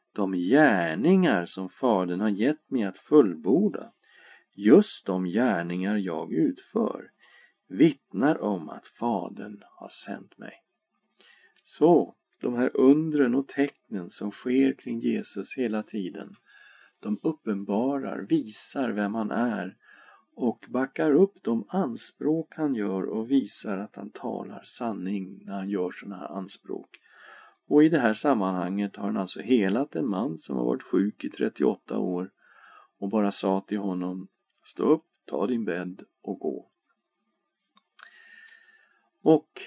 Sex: male